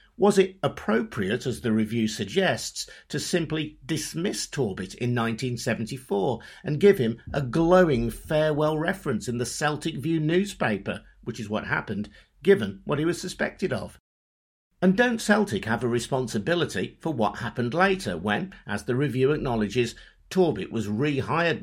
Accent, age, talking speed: British, 50-69, 145 wpm